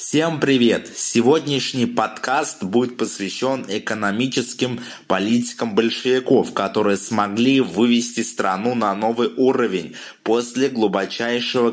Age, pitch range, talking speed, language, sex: 20-39, 110-130 Hz, 90 wpm, Russian, male